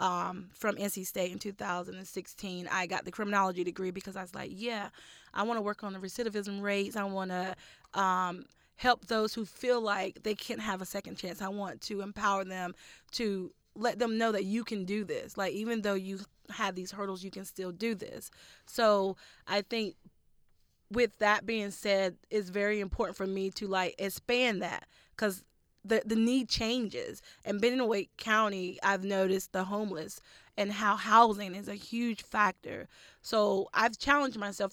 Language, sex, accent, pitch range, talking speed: English, female, American, 190-220 Hz, 185 wpm